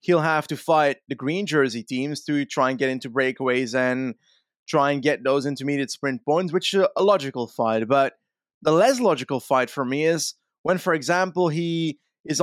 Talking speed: 195 wpm